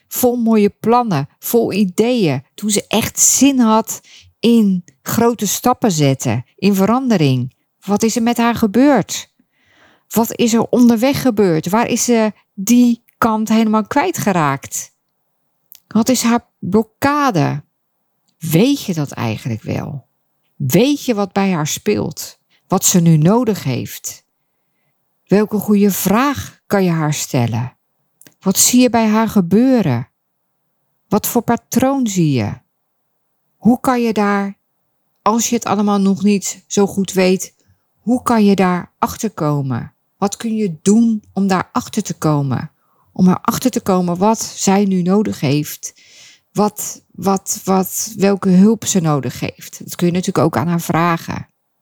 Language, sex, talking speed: Dutch, female, 145 wpm